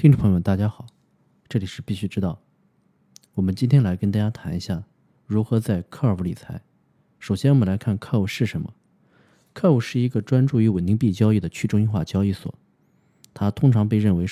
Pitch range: 100-125 Hz